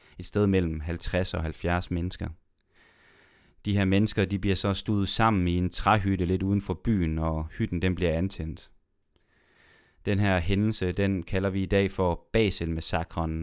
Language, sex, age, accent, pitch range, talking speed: Danish, male, 30-49, native, 85-105 Hz, 165 wpm